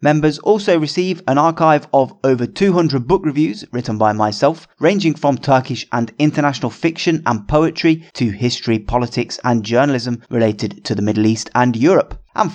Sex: male